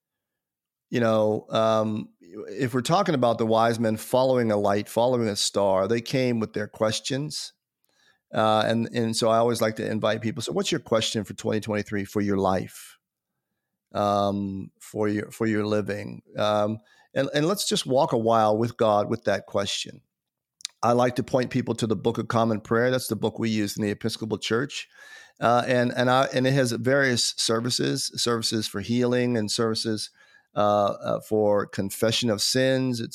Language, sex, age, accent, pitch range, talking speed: English, male, 40-59, American, 110-125 Hz, 180 wpm